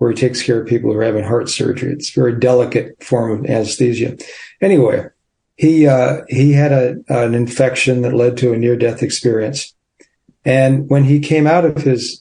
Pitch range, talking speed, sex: 120-140 Hz, 190 wpm, male